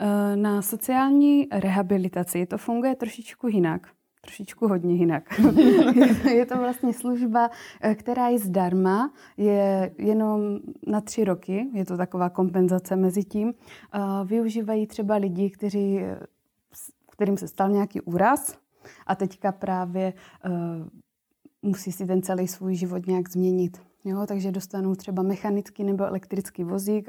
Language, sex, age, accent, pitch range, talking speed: Czech, female, 20-39, native, 185-210 Hz, 120 wpm